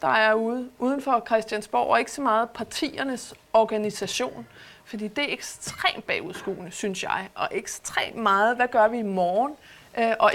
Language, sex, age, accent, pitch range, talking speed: Danish, female, 30-49, native, 210-265 Hz, 160 wpm